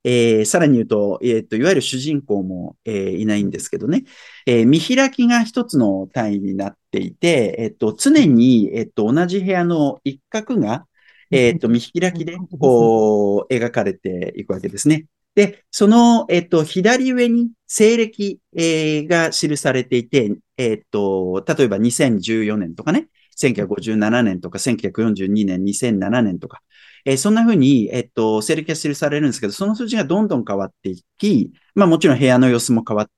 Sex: male